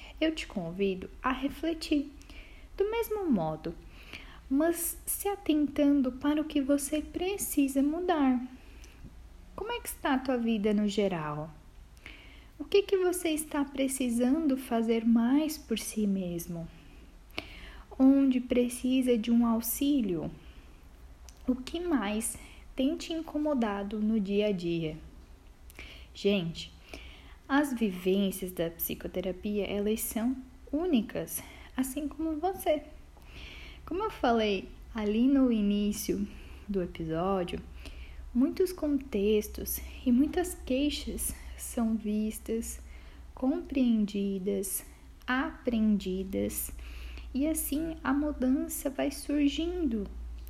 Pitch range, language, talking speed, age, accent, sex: 200-290 Hz, Portuguese, 100 wpm, 10-29, Brazilian, female